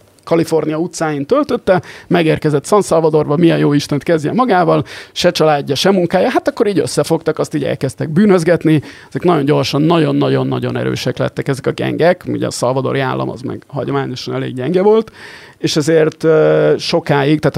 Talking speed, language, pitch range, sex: 165 wpm, Hungarian, 135-160 Hz, male